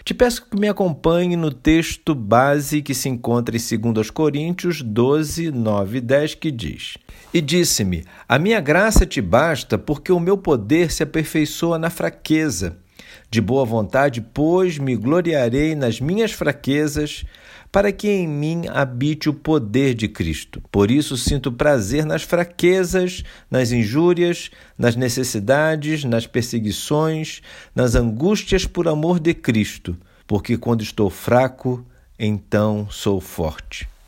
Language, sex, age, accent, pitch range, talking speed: Portuguese, male, 50-69, Brazilian, 115-170 Hz, 135 wpm